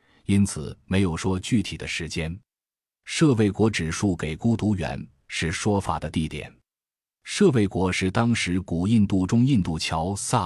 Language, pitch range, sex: Chinese, 80-105 Hz, male